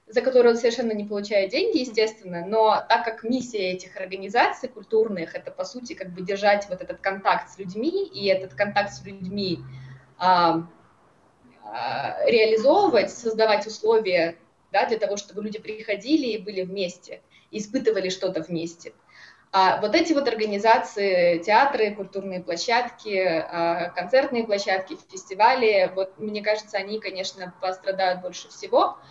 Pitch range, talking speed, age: 185-220 Hz, 140 wpm, 20-39